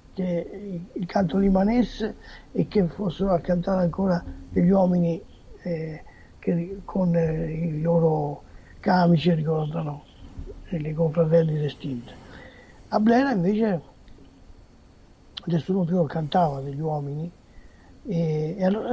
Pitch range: 155-190 Hz